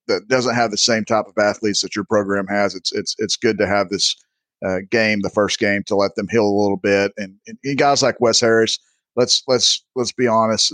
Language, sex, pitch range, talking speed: English, male, 100-110 Hz, 240 wpm